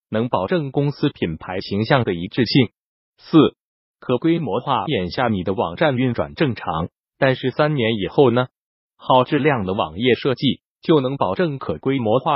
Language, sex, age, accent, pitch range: Chinese, male, 30-49, native, 115-150 Hz